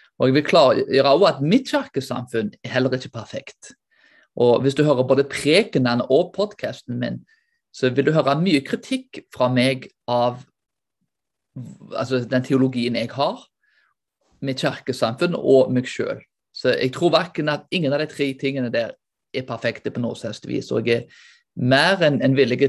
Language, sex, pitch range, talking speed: Danish, male, 125-175 Hz, 160 wpm